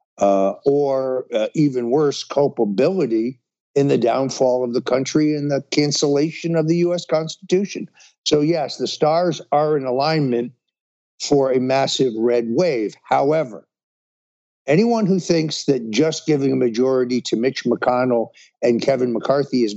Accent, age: American, 60-79